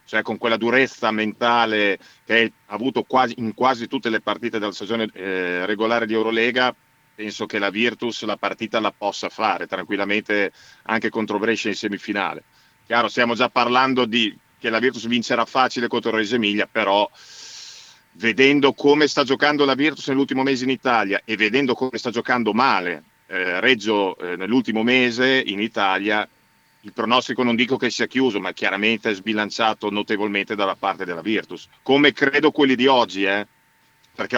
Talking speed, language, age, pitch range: 170 wpm, Italian, 40-59, 110-130 Hz